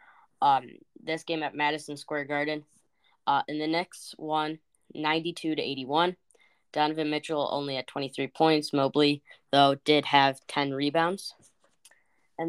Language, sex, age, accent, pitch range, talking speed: English, female, 10-29, American, 140-165 Hz, 125 wpm